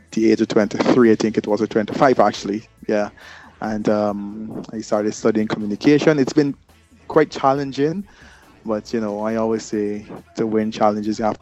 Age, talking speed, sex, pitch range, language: 20-39, 175 wpm, male, 105-115 Hz, English